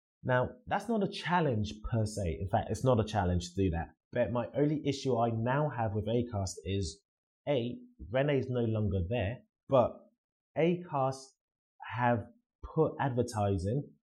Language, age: English, 20-39